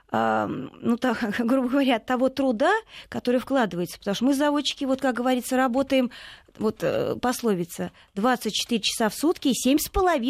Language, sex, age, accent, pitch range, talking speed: Russian, female, 20-39, native, 220-280 Hz, 140 wpm